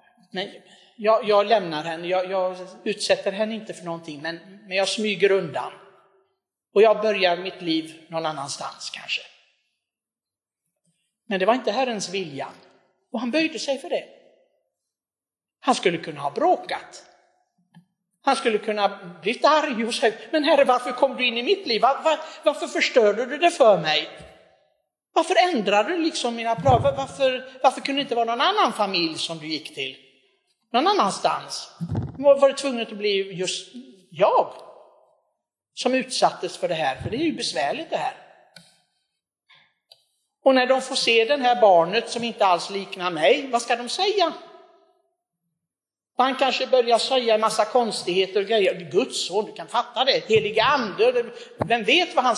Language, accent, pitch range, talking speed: Swedish, native, 185-270 Hz, 165 wpm